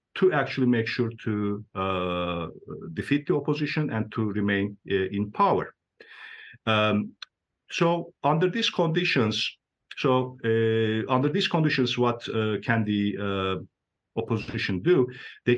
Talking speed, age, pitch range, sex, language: 125 wpm, 50-69, 95-125 Hz, male, English